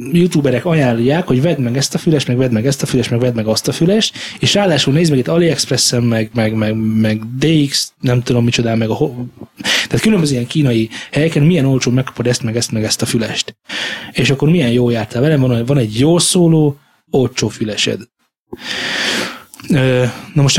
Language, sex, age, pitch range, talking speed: Hungarian, male, 20-39, 115-150 Hz, 190 wpm